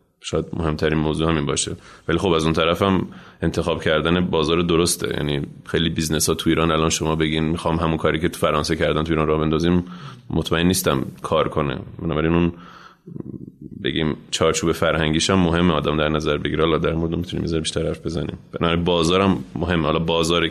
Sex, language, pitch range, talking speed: male, Persian, 80-90 Hz, 180 wpm